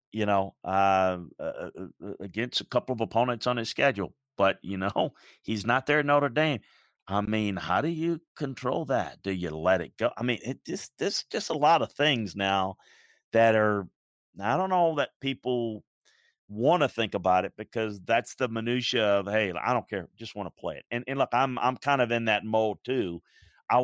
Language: English